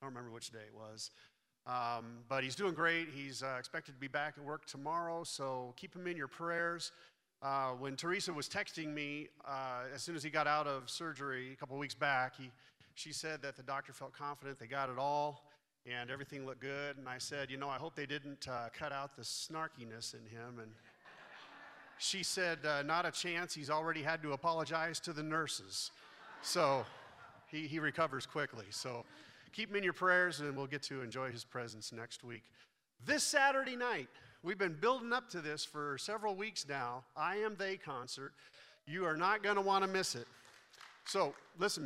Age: 40-59